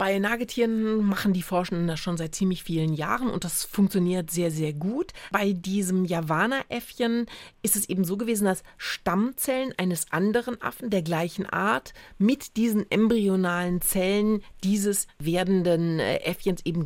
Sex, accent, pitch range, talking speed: female, German, 175-220 Hz, 150 wpm